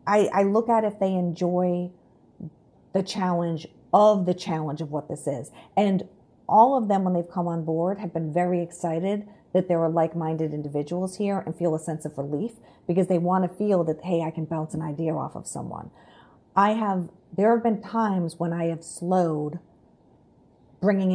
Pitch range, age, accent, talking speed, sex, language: 170-205 Hz, 50-69, American, 195 wpm, female, English